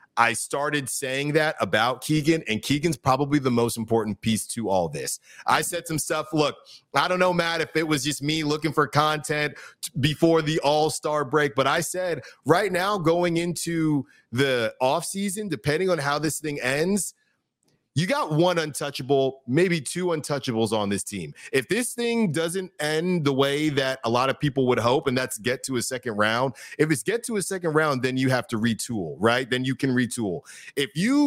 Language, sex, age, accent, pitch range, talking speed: English, male, 30-49, American, 130-165 Hz, 195 wpm